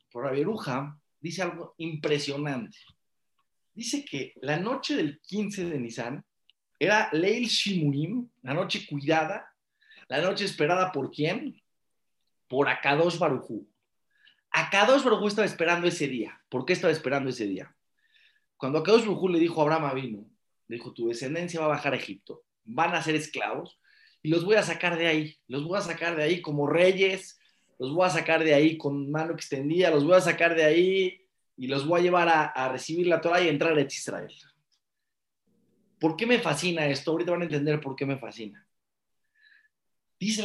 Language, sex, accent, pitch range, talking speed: English, male, Mexican, 145-190 Hz, 175 wpm